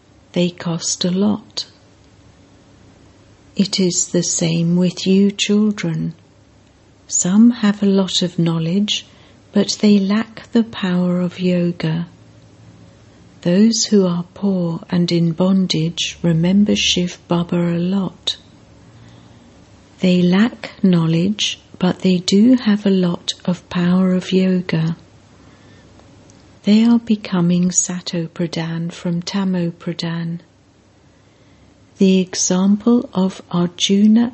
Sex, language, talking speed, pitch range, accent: female, English, 105 wpm, 170-200 Hz, British